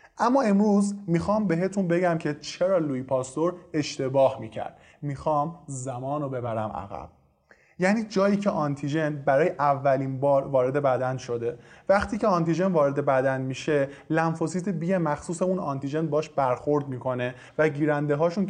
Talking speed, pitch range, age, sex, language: 135 wpm, 140-180 Hz, 20-39, male, Persian